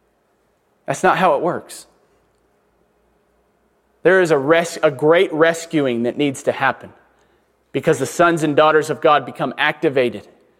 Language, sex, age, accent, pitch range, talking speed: English, male, 30-49, American, 155-200 Hz, 135 wpm